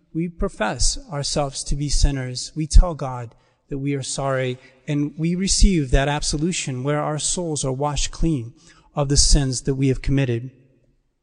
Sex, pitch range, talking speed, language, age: male, 140-170 Hz, 165 wpm, English, 30-49